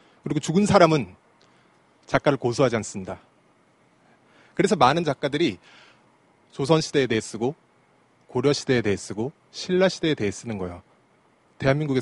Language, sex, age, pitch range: Korean, male, 30-49, 115-165 Hz